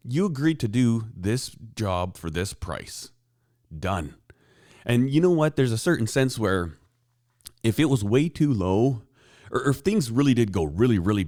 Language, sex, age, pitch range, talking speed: English, male, 30-49, 95-125 Hz, 180 wpm